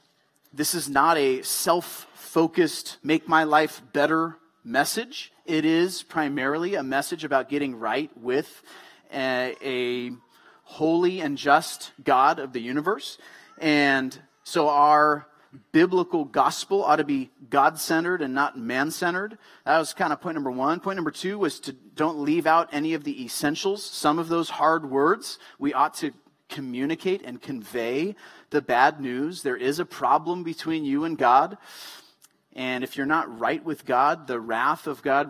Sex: male